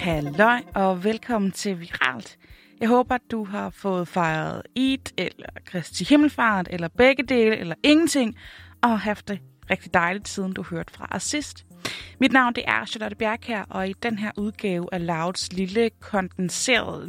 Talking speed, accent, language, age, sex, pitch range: 170 wpm, native, Danish, 20-39, female, 180-245 Hz